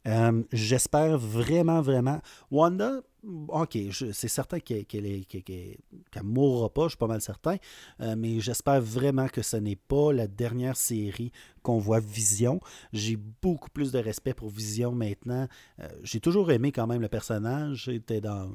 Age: 40-59